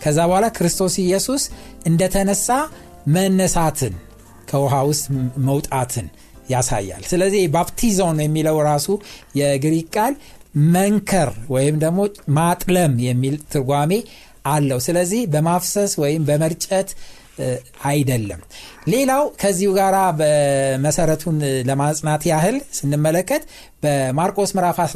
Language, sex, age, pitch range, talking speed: Amharic, male, 60-79, 135-195 Hz, 70 wpm